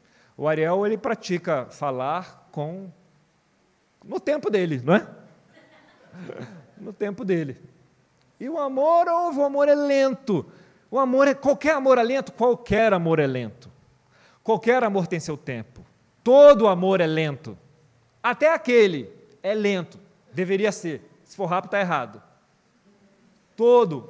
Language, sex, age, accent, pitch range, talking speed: Portuguese, male, 40-59, Brazilian, 150-210 Hz, 125 wpm